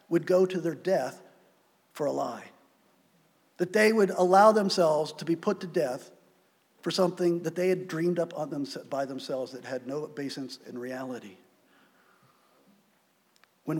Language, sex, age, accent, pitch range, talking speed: English, male, 50-69, American, 150-185 Hz, 150 wpm